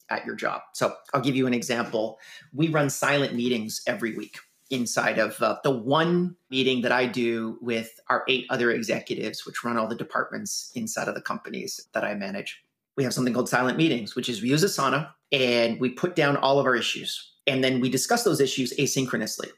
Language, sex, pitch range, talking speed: English, male, 125-155 Hz, 205 wpm